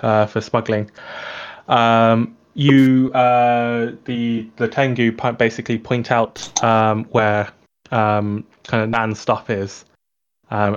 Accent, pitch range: British, 110-130 Hz